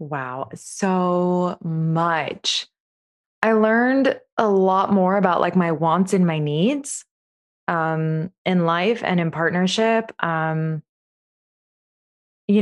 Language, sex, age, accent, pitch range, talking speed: English, female, 20-39, American, 160-210 Hz, 110 wpm